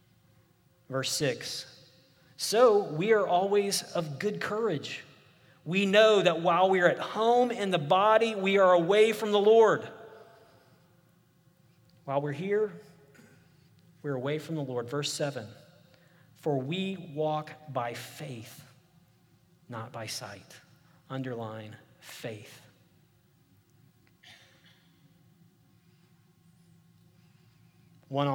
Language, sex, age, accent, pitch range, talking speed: English, male, 40-59, American, 130-170 Hz, 100 wpm